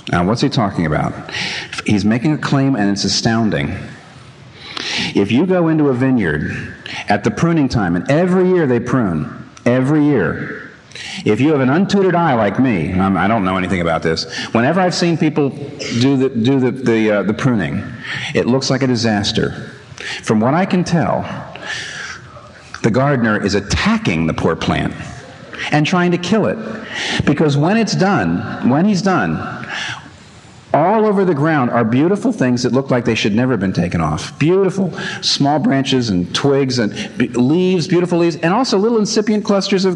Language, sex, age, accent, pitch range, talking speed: English, male, 50-69, American, 125-195 Hz, 175 wpm